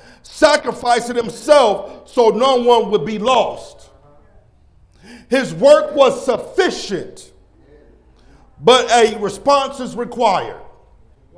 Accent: American